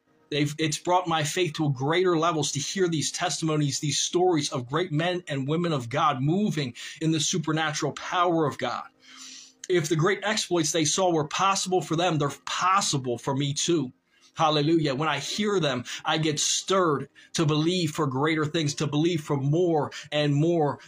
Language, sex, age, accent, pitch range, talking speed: English, male, 30-49, American, 150-180 Hz, 180 wpm